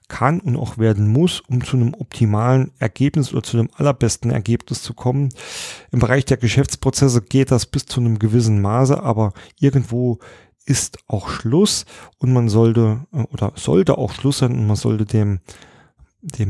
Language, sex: German, male